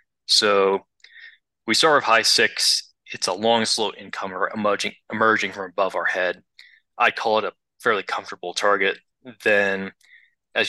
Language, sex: English, male